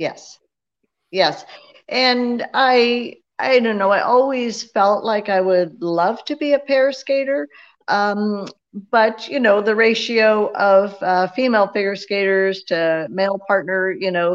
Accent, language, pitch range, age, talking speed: American, English, 180-215 Hz, 50-69, 145 wpm